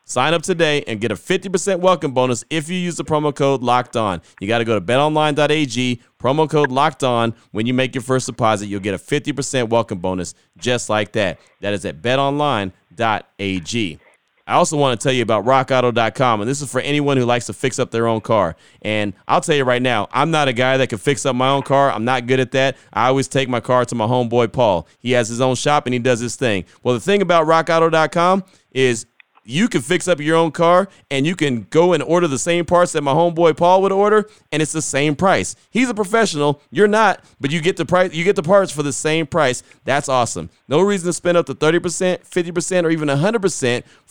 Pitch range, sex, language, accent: 125-170 Hz, male, English, American